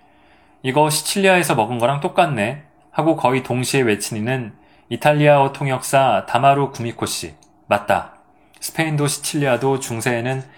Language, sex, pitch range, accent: Korean, male, 110-145 Hz, native